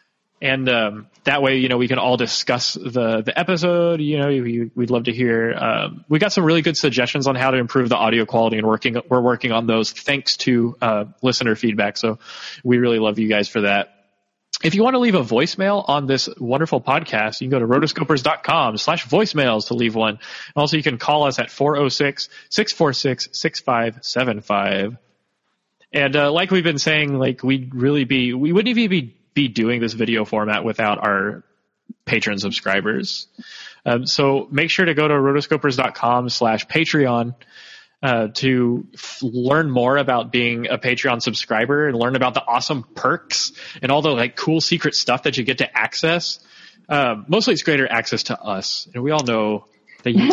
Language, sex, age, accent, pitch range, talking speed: English, male, 20-39, American, 115-150 Hz, 185 wpm